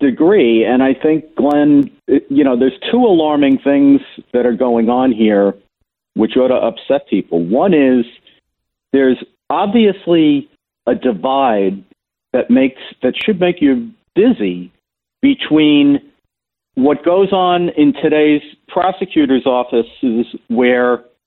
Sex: male